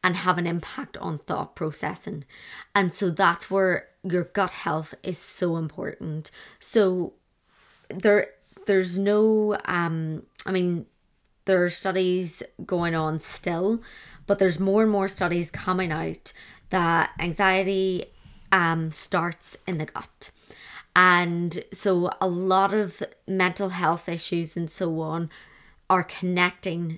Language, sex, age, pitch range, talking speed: English, female, 20-39, 170-195 Hz, 130 wpm